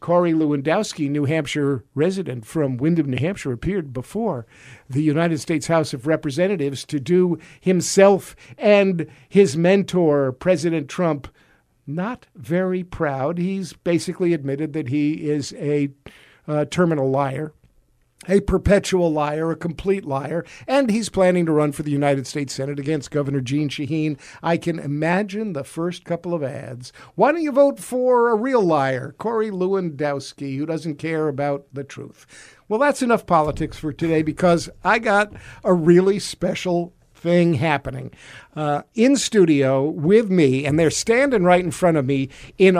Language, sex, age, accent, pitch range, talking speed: English, male, 50-69, American, 145-190 Hz, 155 wpm